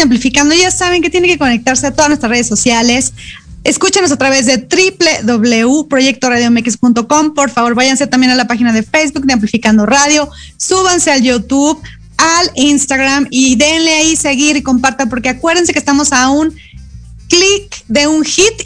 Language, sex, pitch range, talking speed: Spanish, female, 255-310 Hz, 160 wpm